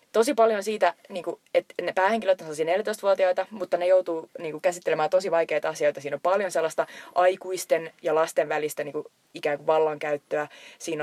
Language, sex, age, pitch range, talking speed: Finnish, female, 20-39, 155-195 Hz, 145 wpm